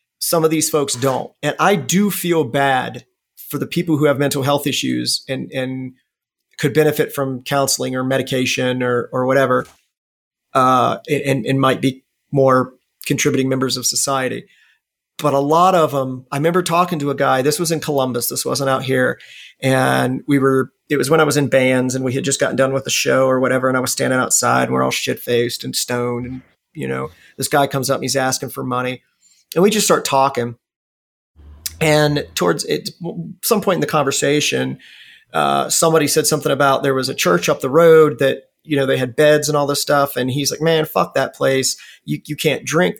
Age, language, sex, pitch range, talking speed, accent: 40-59, English, male, 130-155 Hz, 210 wpm, American